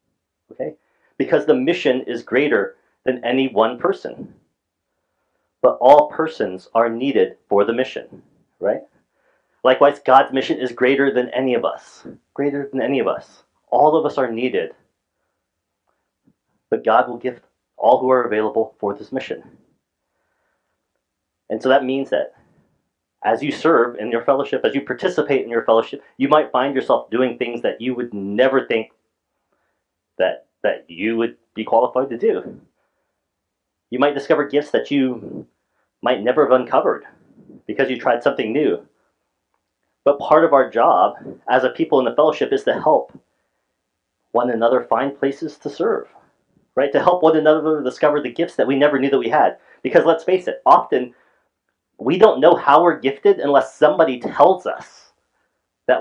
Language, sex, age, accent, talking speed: English, male, 30-49, American, 160 wpm